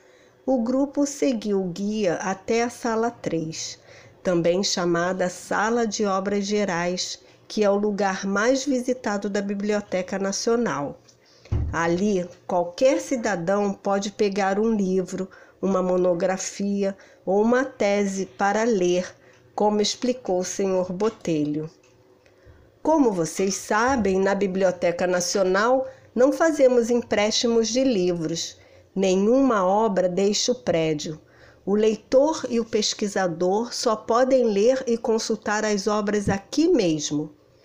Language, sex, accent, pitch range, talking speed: Portuguese, female, Brazilian, 185-240 Hz, 115 wpm